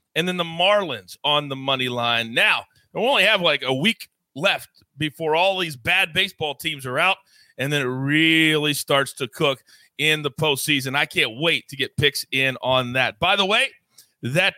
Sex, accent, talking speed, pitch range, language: male, American, 195 wpm, 145-225 Hz, English